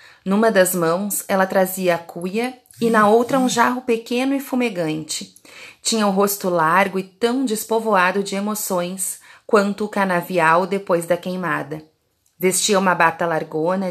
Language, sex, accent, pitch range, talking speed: Portuguese, female, Brazilian, 170-220 Hz, 145 wpm